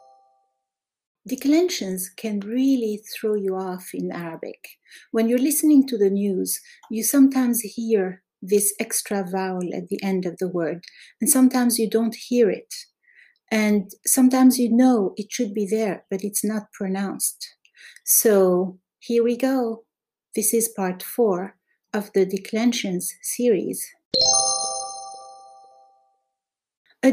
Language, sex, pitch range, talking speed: English, female, 180-235 Hz, 125 wpm